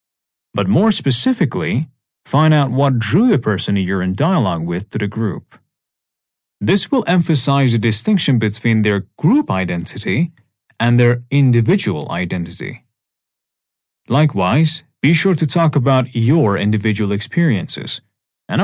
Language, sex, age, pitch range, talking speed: Persian, male, 30-49, 105-160 Hz, 125 wpm